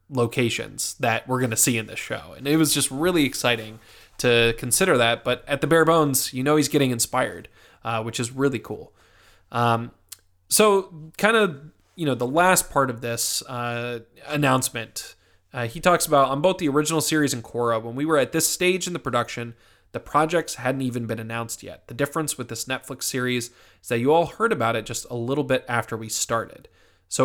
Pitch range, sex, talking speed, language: 110-145 Hz, male, 205 wpm, English